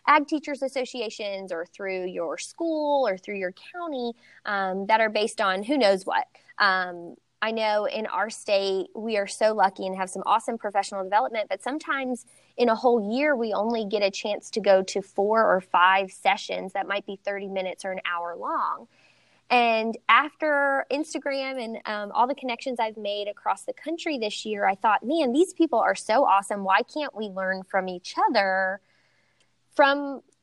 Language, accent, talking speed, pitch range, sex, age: English, American, 185 wpm, 200-280 Hz, female, 20-39